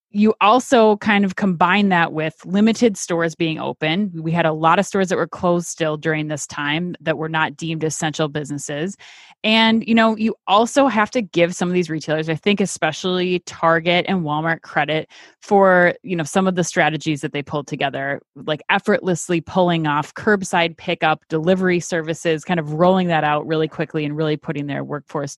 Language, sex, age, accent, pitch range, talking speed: English, female, 20-39, American, 160-200 Hz, 190 wpm